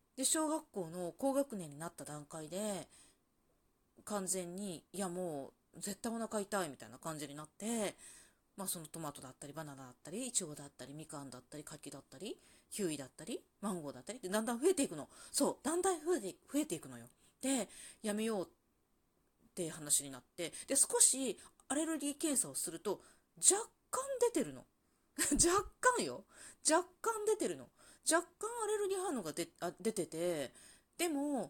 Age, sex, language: 30-49, female, Japanese